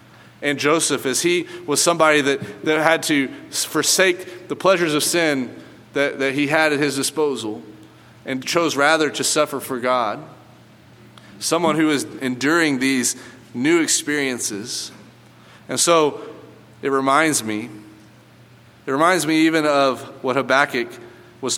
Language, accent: English, American